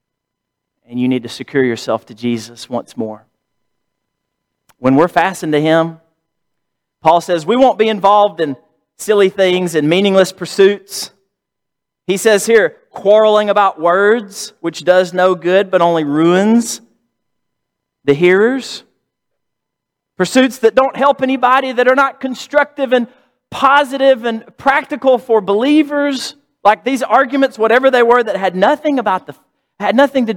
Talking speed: 140 wpm